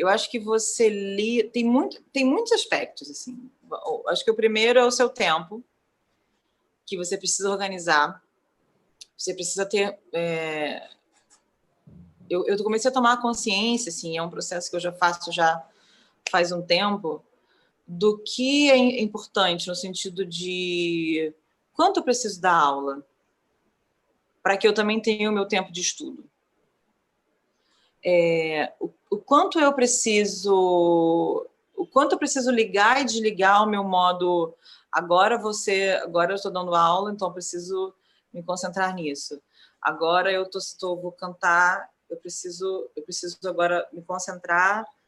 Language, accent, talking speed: Portuguese, Brazilian, 145 wpm